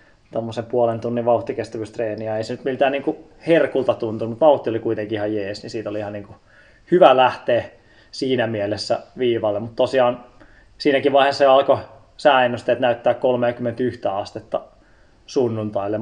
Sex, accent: male, native